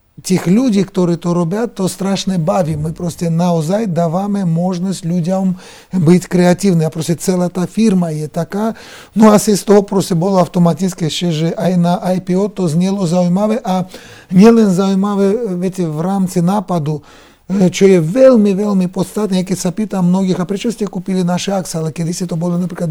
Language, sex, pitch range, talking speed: Czech, male, 175-200 Hz, 165 wpm